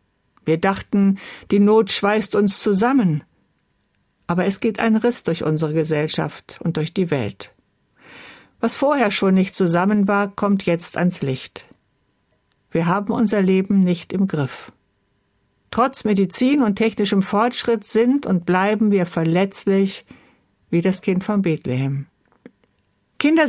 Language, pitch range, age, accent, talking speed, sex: German, 170-225 Hz, 60-79, German, 135 wpm, female